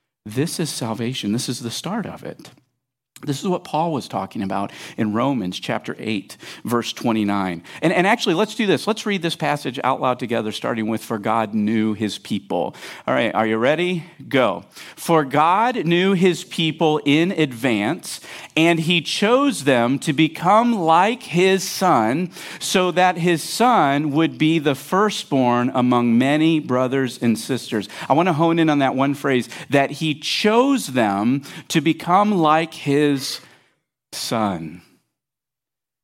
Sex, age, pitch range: male, 50-69, 125-185 Hz